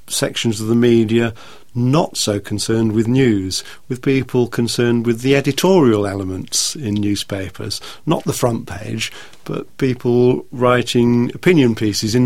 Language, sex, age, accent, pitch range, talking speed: English, male, 40-59, British, 110-135 Hz, 135 wpm